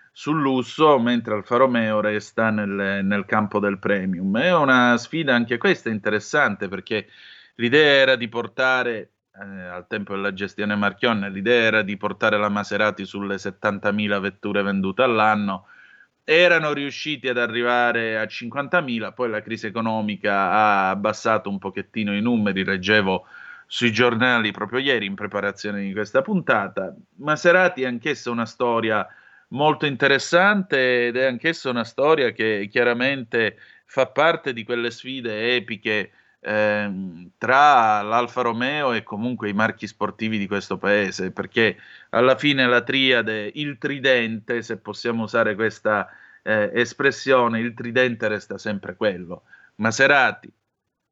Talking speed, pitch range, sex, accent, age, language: 135 wpm, 105-125 Hz, male, native, 30-49, Italian